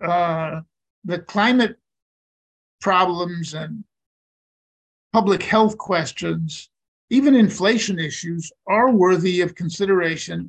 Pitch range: 160-190 Hz